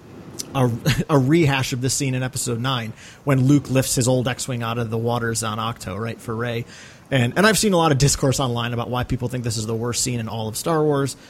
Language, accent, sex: English, American, male